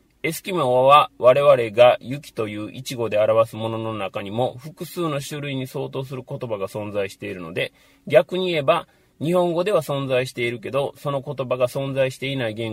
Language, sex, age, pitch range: Japanese, male, 30-49, 110-145 Hz